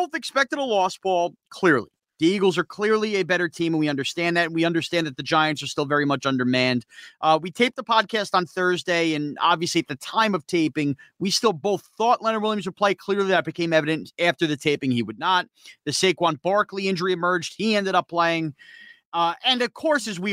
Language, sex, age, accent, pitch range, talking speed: English, male, 30-49, American, 145-195 Hz, 220 wpm